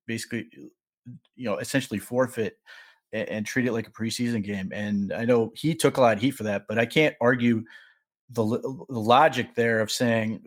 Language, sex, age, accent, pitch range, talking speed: English, male, 30-49, American, 115-140 Hz, 195 wpm